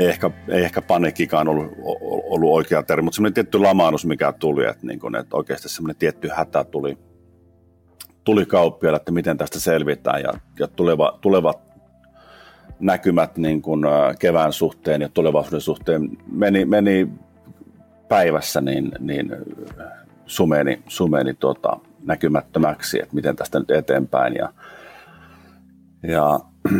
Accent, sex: native, male